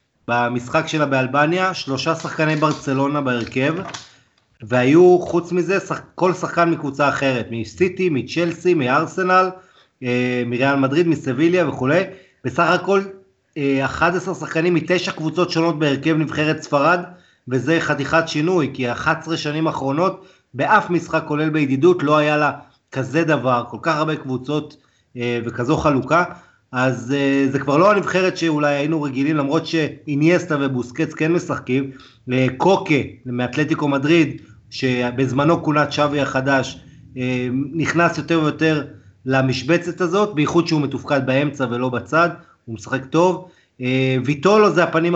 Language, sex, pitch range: Hebrew, male, 130-165 Hz